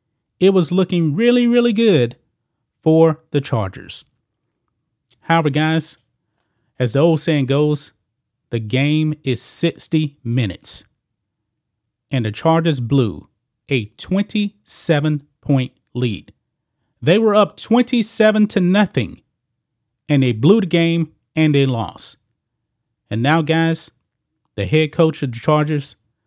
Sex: male